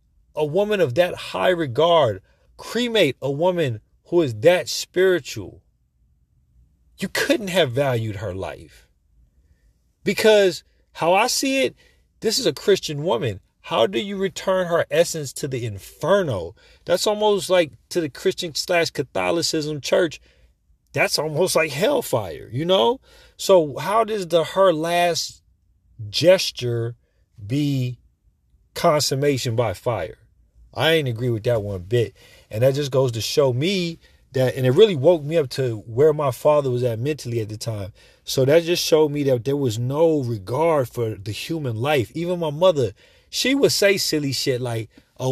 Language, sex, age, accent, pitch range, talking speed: English, male, 40-59, American, 115-160 Hz, 160 wpm